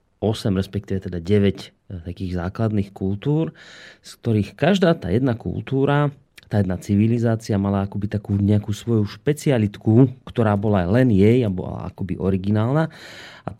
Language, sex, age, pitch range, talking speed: Slovak, male, 30-49, 100-130 Hz, 140 wpm